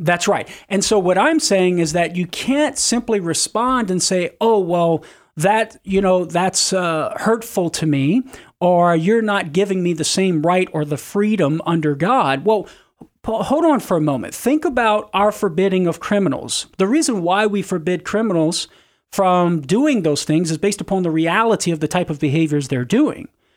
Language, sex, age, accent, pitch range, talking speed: English, male, 40-59, American, 165-220 Hz, 185 wpm